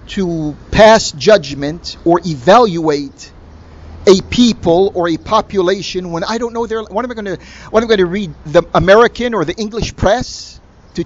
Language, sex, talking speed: English, male, 175 wpm